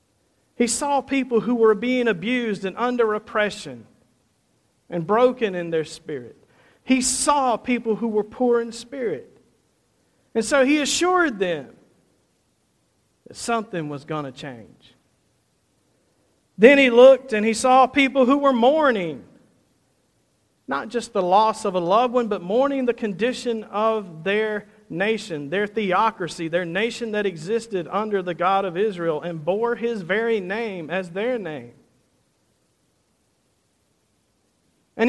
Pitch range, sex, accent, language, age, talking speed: 195-260 Hz, male, American, English, 50-69, 135 wpm